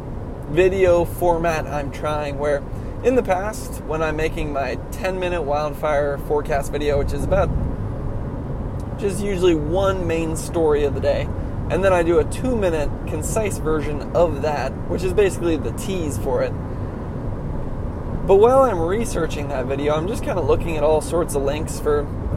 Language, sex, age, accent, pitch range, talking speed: English, male, 20-39, American, 135-185 Hz, 170 wpm